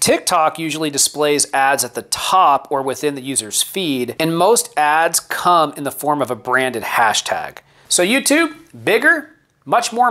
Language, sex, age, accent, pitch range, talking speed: English, male, 30-49, American, 135-175 Hz, 165 wpm